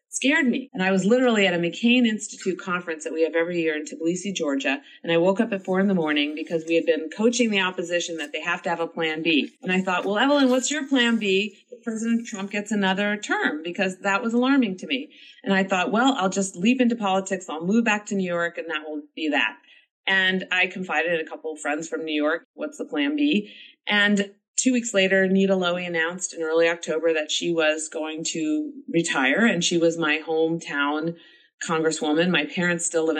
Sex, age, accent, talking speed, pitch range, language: female, 30-49, American, 225 wpm, 160-210 Hz, English